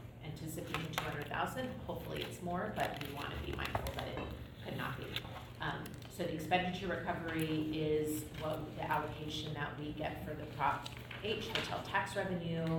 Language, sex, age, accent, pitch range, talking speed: English, female, 30-49, American, 140-170 Hz, 175 wpm